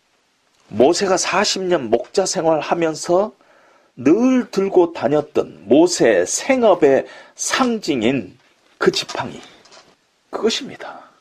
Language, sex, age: Korean, male, 40-59